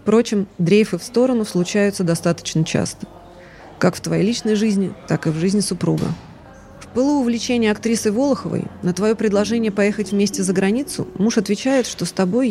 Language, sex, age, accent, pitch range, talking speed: Russian, female, 20-39, native, 175-215 Hz, 165 wpm